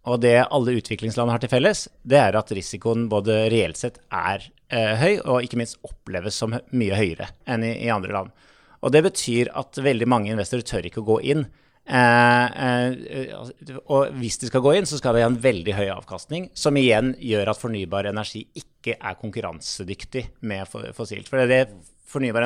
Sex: male